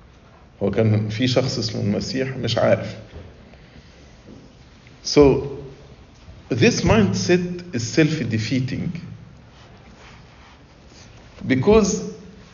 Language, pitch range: English, 110-155 Hz